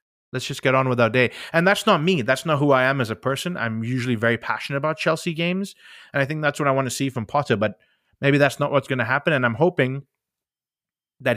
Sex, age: male, 20-39